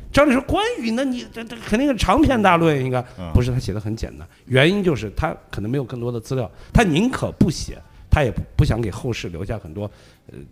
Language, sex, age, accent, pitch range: Chinese, male, 50-69, native, 110-185 Hz